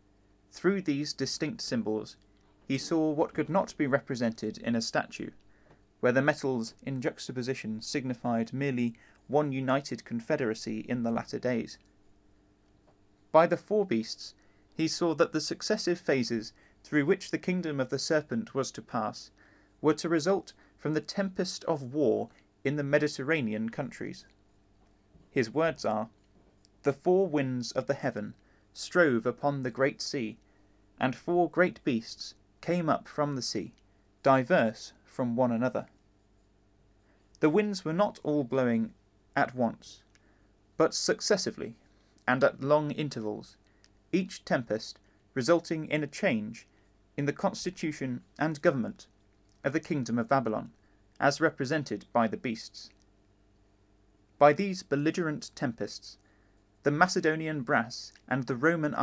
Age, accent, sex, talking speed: 30-49, British, male, 135 wpm